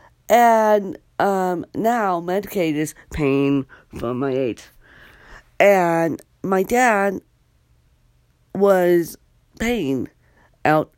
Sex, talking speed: female, 80 wpm